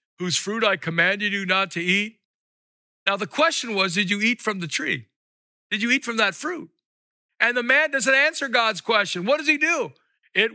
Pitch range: 200-280 Hz